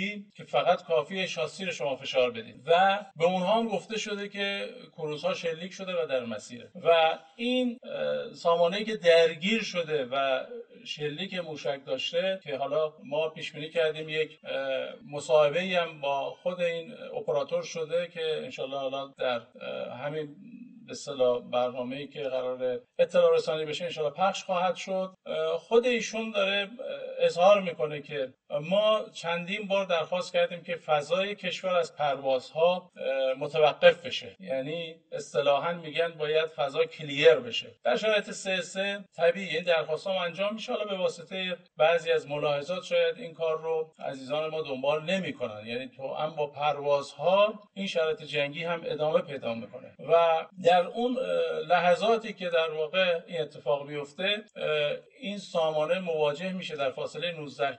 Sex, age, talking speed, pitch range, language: male, 50-69, 140 wpm, 150-205 Hz, Persian